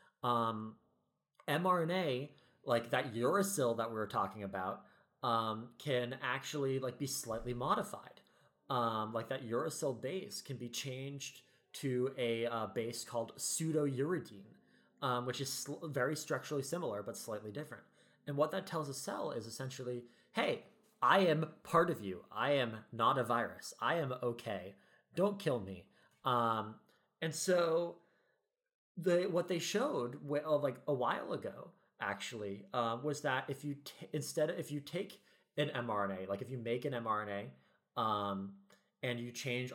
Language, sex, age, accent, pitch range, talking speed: English, male, 30-49, American, 115-150 Hz, 150 wpm